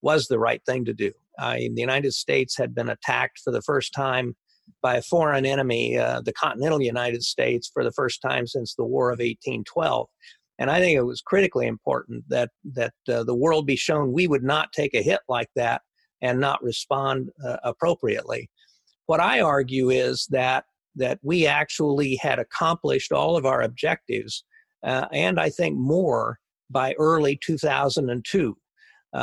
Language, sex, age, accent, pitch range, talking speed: English, male, 50-69, American, 130-160 Hz, 175 wpm